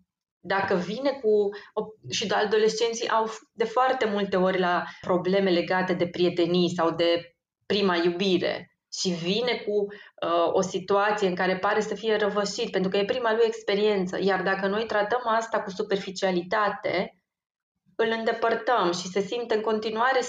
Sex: female